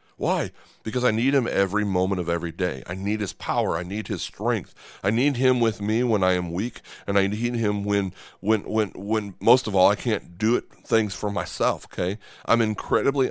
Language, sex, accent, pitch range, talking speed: English, male, American, 90-115 Hz, 215 wpm